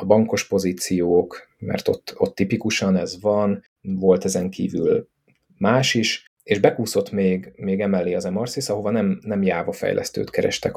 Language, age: Hungarian, 30-49